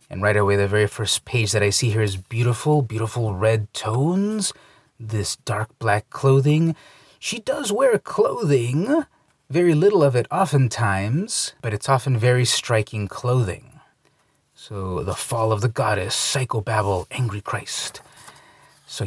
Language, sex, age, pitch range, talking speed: English, male, 30-49, 105-135 Hz, 140 wpm